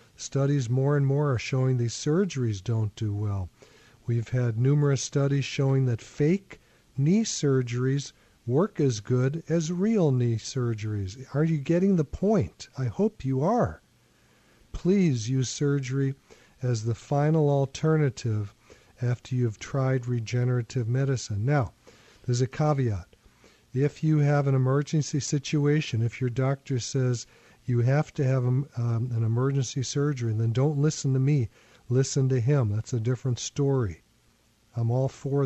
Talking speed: 145 wpm